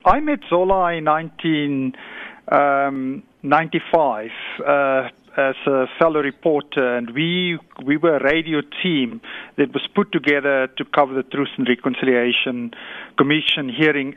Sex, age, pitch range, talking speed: male, 50-69, 145-195 Hz, 125 wpm